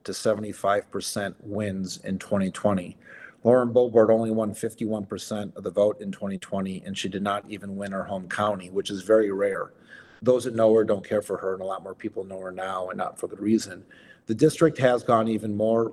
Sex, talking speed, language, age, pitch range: male, 205 wpm, English, 40-59, 100-115 Hz